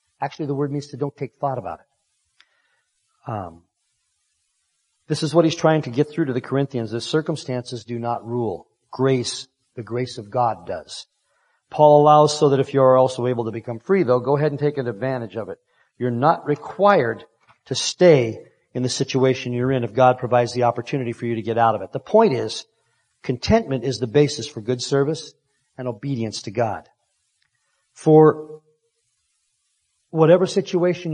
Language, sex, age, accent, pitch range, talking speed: English, male, 40-59, American, 120-150 Hz, 175 wpm